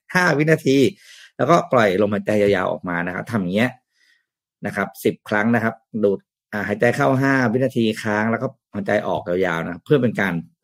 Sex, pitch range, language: male, 100-130 Hz, Thai